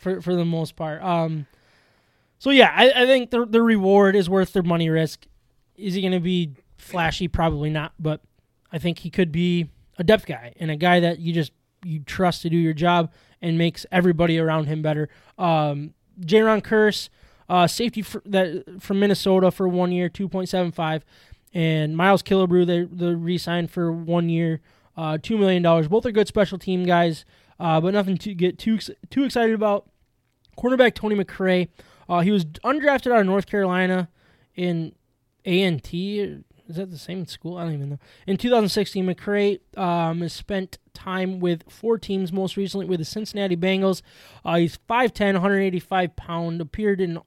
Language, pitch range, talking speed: English, 165-195 Hz, 180 wpm